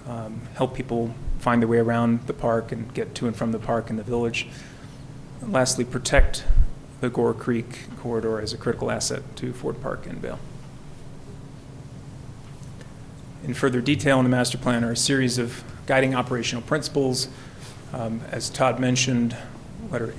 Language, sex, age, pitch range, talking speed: English, male, 30-49, 115-135 Hz, 160 wpm